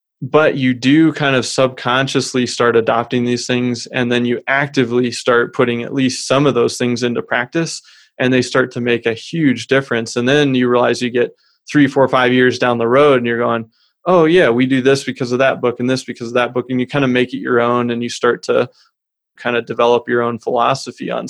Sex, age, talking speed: male, 20-39, 230 wpm